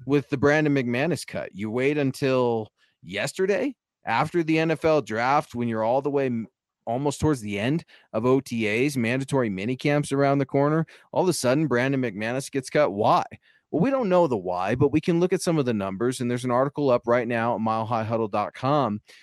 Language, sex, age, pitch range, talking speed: English, male, 30-49, 115-145 Hz, 195 wpm